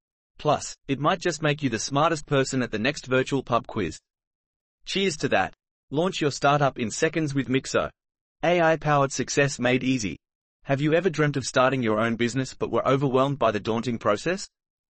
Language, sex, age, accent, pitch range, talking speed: English, male, 30-49, Australian, 125-150 Hz, 180 wpm